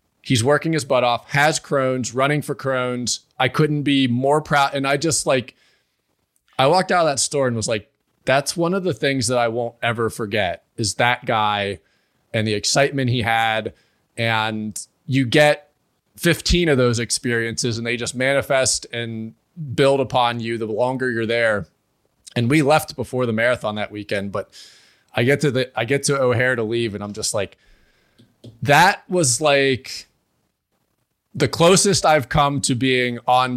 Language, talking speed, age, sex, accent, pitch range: English, 170 wpm, 30-49, male, American, 120-150 Hz